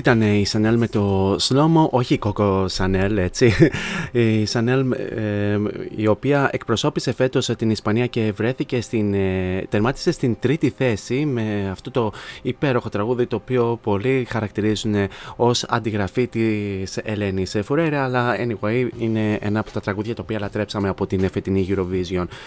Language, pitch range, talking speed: Greek, 105-125 Hz, 140 wpm